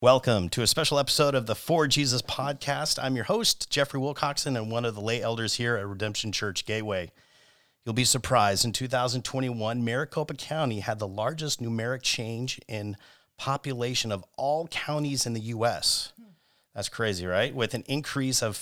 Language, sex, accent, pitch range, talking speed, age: English, male, American, 105-140 Hz, 170 wpm, 40-59